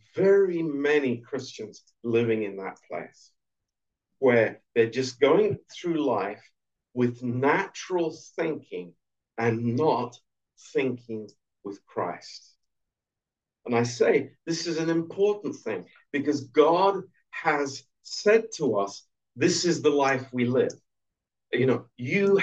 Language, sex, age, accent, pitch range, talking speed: Romanian, male, 50-69, British, 120-160 Hz, 120 wpm